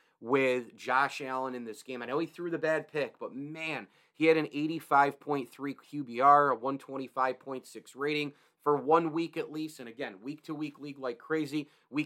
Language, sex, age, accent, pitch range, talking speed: English, male, 30-49, American, 125-150 Hz, 180 wpm